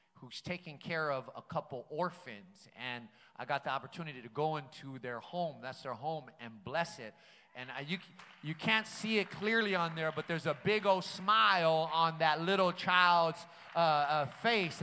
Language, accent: English, American